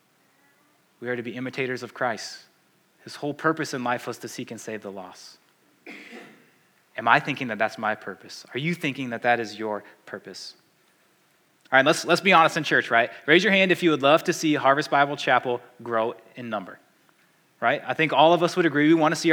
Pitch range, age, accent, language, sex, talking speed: 120-160 Hz, 20-39, American, English, male, 215 wpm